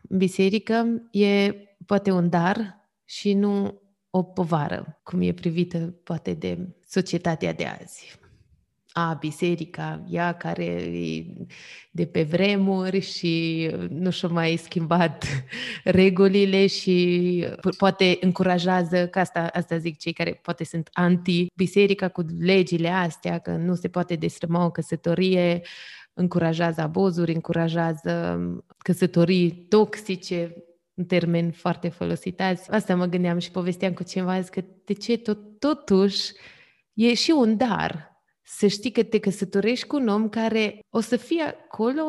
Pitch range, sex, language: 170-210 Hz, female, Romanian